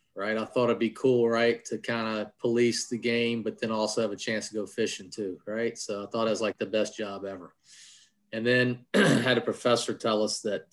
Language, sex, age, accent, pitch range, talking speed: English, male, 30-49, American, 105-120 Hz, 240 wpm